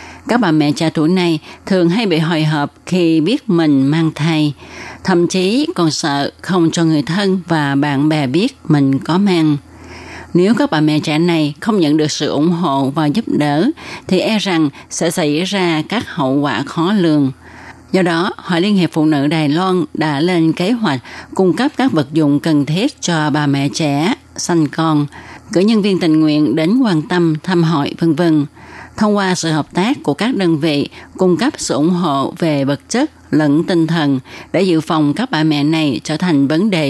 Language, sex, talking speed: Vietnamese, female, 205 wpm